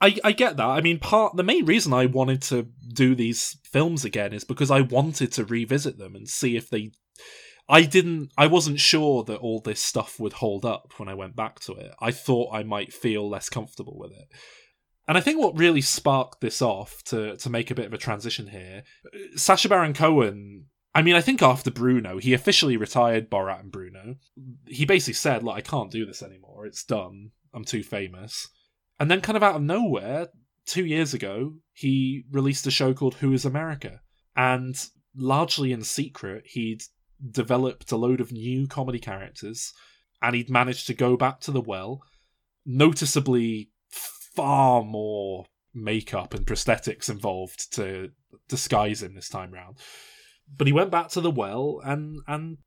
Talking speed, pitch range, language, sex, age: 185 wpm, 110-145 Hz, English, male, 20-39